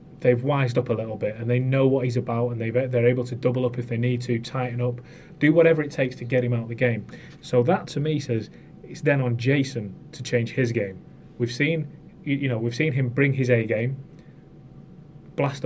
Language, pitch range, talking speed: English, 120-150 Hz, 235 wpm